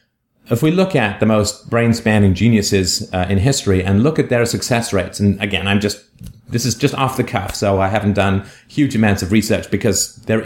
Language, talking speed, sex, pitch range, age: English, 210 wpm, male, 100-120 Hz, 30-49